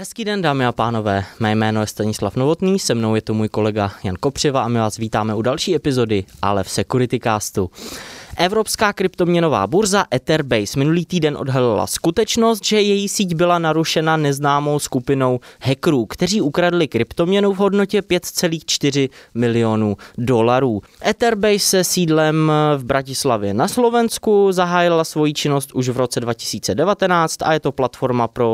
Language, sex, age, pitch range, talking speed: Czech, male, 20-39, 115-175 Hz, 150 wpm